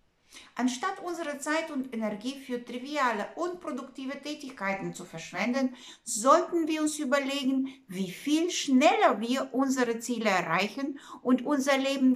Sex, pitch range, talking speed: female, 215-280 Hz, 130 wpm